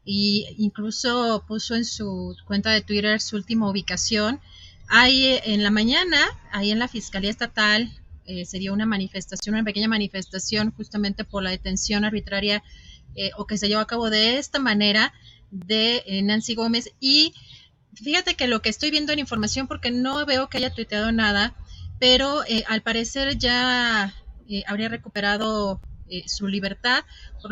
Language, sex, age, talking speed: Spanish, female, 30-49, 165 wpm